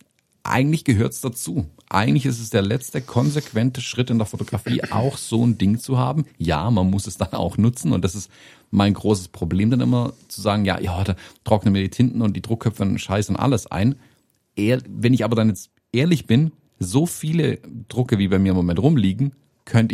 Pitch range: 95-120 Hz